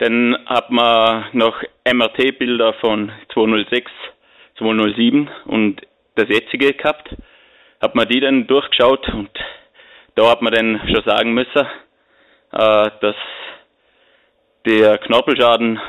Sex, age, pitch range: male, 20-39, 105-120 Hz